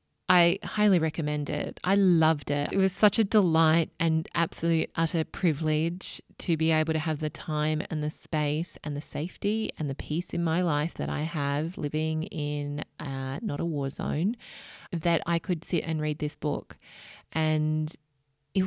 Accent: Australian